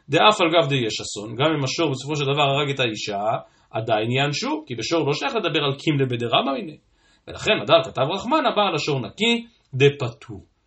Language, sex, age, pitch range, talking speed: Hebrew, male, 40-59, 130-180 Hz, 190 wpm